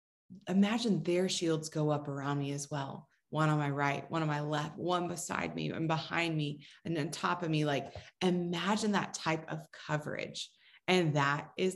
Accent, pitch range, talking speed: American, 160-195 Hz, 190 wpm